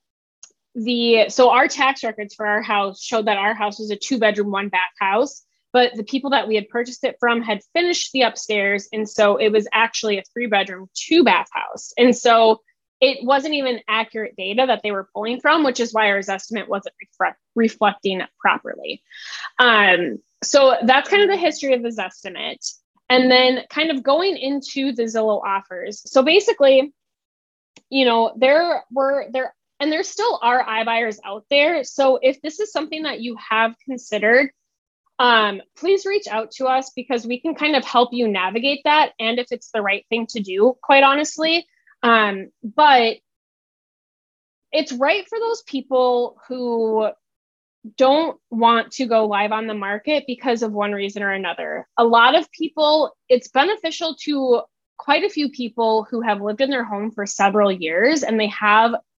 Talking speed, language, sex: 180 wpm, English, female